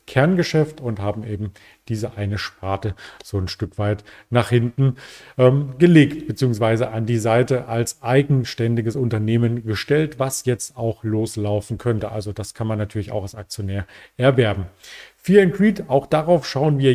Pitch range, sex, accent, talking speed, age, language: 110-140 Hz, male, German, 155 wpm, 40-59, German